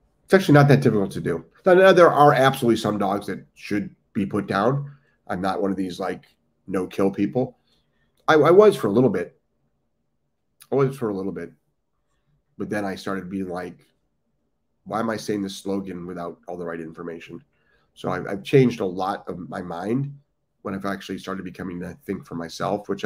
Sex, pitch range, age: male, 90-115 Hz, 30-49